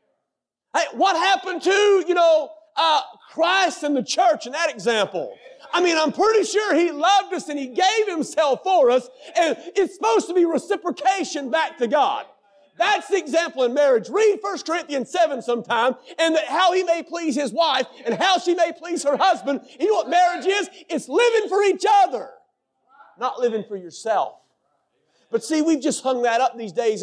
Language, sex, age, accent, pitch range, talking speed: English, male, 40-59, American, 230-350 Hz, 185 wpm